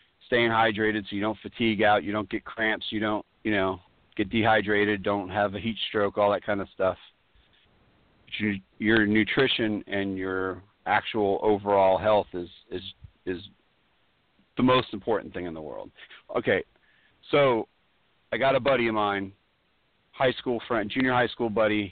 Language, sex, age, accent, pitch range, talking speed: English, male, 40-59, American, 100-115 Hz, 160 wpm